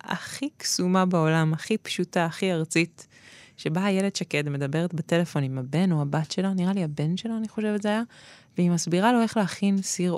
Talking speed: 185 wpm